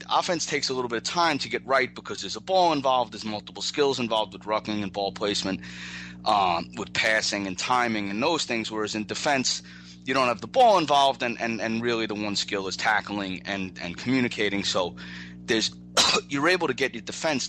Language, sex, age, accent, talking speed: English, male, 30-49, American, 210 wpm